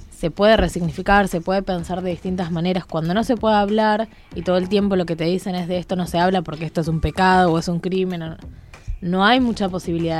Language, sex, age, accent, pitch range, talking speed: Spanish, female, 20-39, Argentinian, 160-200 Hz, 245 wpm